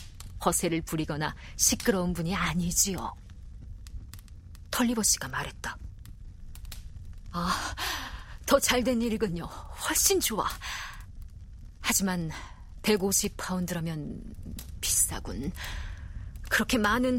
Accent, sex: native, female